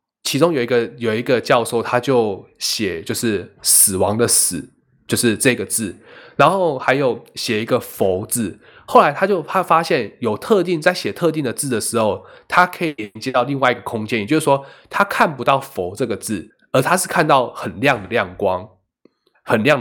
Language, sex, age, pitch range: Chinese, male, 20-39, 115-145 Hz